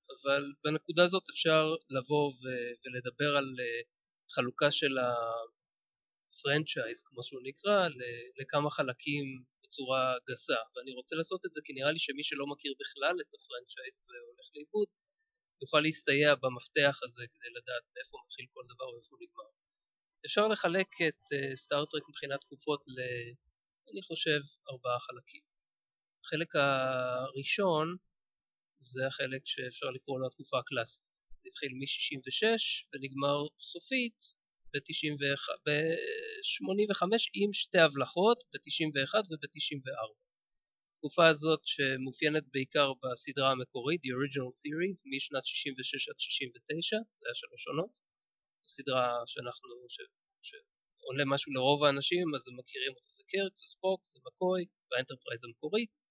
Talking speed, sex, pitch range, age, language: 115 wpm, male, 135-210 Hz, 30-49, Hebrew